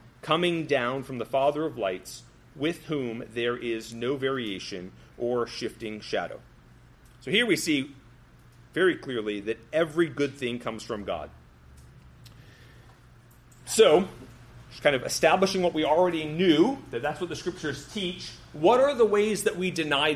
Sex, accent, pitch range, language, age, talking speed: male, American, 120-180 Hz, English, 40-59, 150 wpm